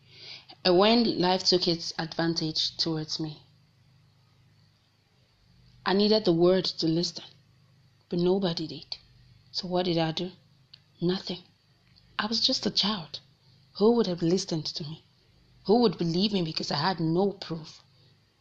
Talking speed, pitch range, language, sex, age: 140 wpm, 130-190 Hz, English, female, 30-49